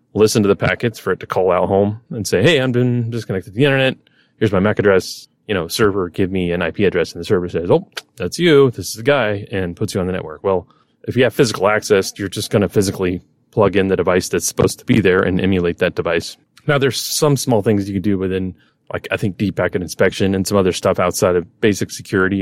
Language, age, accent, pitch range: English, 30-49, American, 90-115 Hz